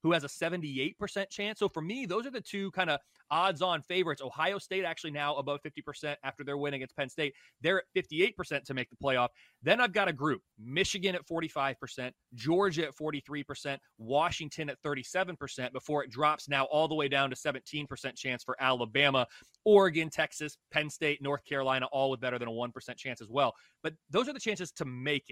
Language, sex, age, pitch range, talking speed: English, male, 30-49, 135-175 Hz, 200 wpm